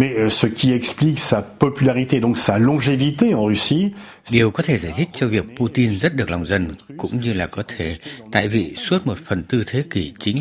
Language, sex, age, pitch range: Vietnamese, male, 60-79, 95-120 Hz